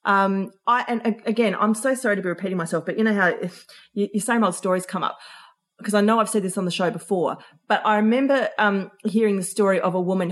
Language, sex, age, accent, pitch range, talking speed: English, female, 30-49, Australian, 200-280 Hz, 240 wpm